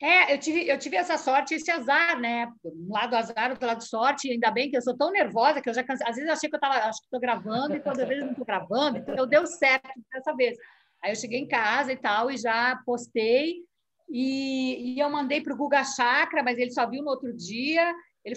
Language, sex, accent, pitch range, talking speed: Portuguese, female, Brazilian, 235-290 Hz, 250 wpm